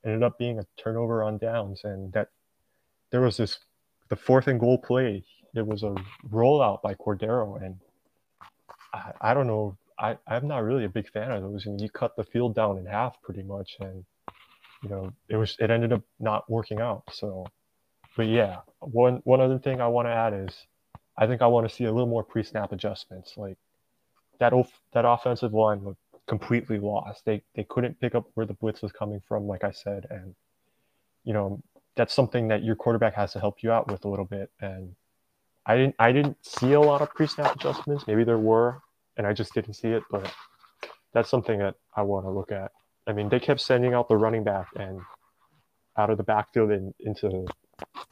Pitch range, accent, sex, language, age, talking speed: 100-120 Hz, American, male, English, 20-39, 205 wpm